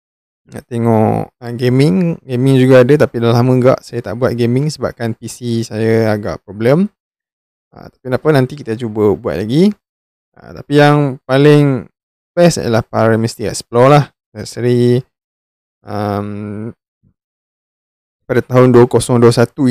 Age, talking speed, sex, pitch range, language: 20-39, 125 wpm, male, 110-125 Hz, Malay